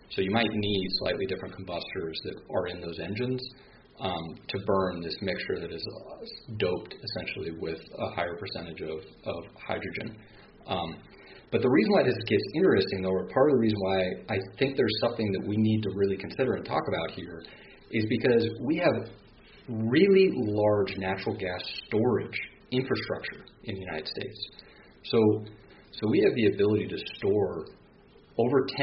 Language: English